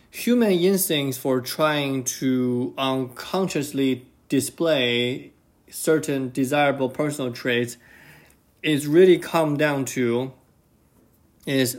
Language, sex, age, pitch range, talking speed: English, male, 20-39, 125-145 Hz, 85 wpm